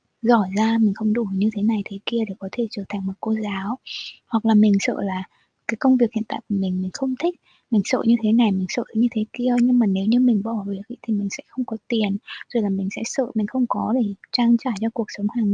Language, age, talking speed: Vietnamese, 20-39, 280 wpm